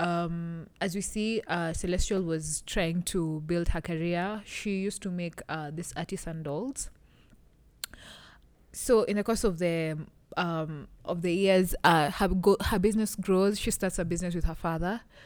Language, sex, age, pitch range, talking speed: English, female, 20-39, 160-190 Hz, 170 wpm